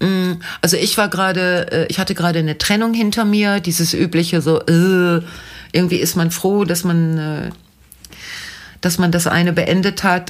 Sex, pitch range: female, 135-175 Hz